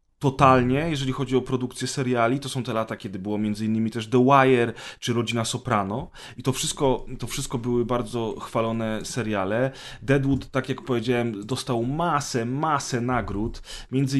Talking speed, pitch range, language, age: 155 wpm, 110-130 Hz, Polish, 30-49